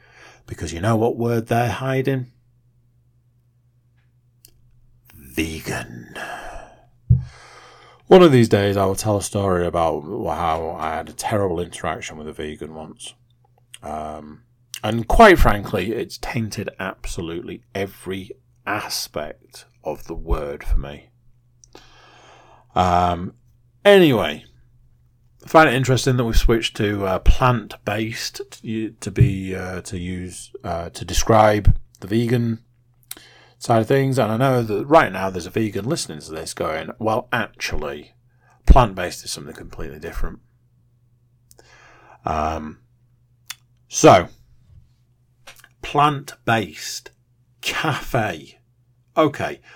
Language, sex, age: English, male, 40-59